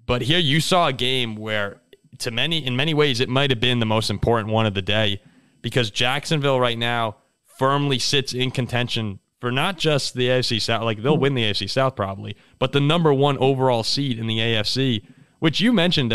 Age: 30-49